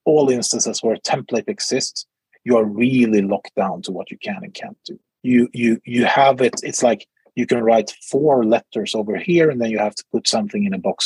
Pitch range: 120-165 Hz